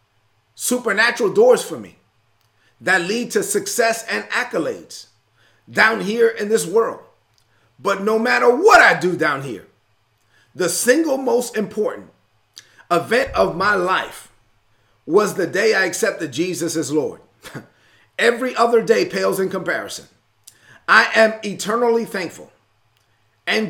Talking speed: 125 wpm